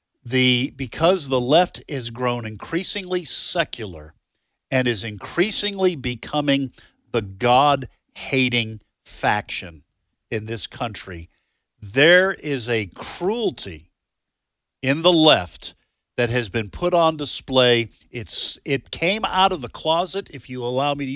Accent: American